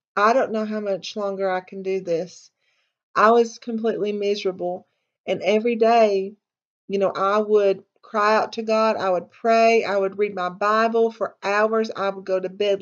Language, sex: English, female